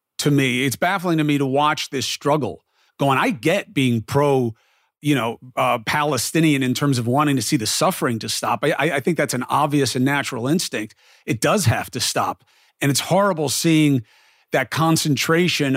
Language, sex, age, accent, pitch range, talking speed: English, male, 40-59, American, 130-165 Hz, 185 wpm